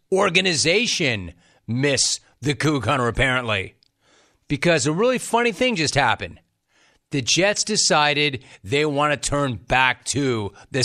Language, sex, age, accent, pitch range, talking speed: English, male, 40-59, American, 130-170 Hz, 125 wpm